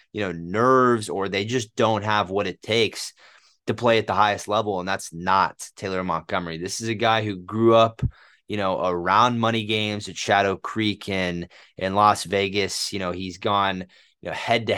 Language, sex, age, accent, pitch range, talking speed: English, male, 30-49, American, 90-110 Hz, 200 wpm